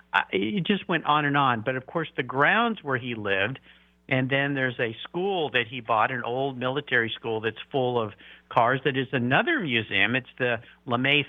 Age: 50-69